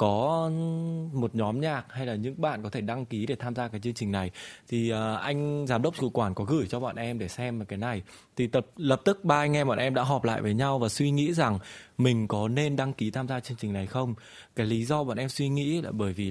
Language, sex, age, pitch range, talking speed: Vietnamese, male, 20-39, 105-140 Hz, 270 wpm